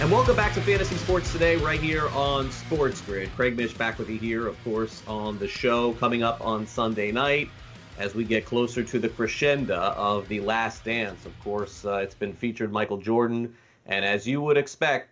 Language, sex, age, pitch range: English, male, 30-49, 105-125 Hz